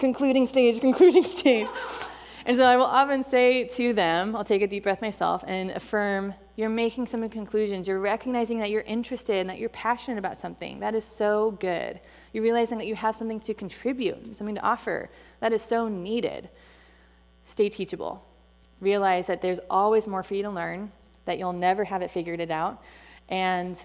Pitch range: 180-220 Hz